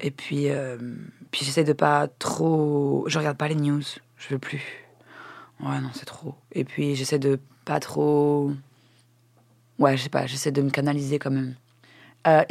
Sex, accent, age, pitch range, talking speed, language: female, French, 20-39, 140-165 Hz, 195 wpm, French